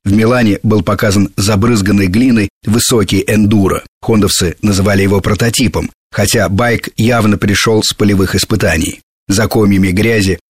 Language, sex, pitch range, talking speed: Russian, male, 100-125 Hz, 125 wpm